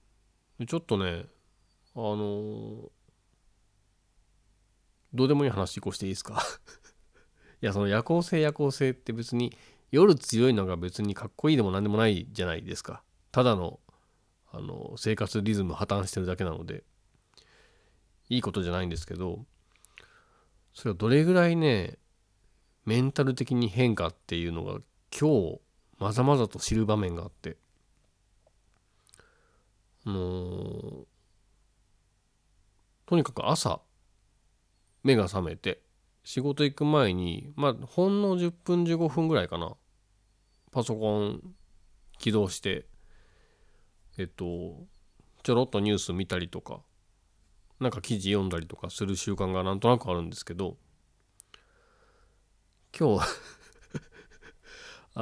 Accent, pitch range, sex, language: native, 95-125 Hz, male, Japanese